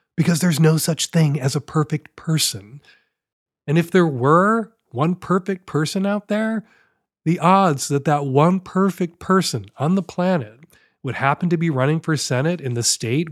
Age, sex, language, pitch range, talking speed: 40-59, male, English, 130-170 Hz, 170 wpm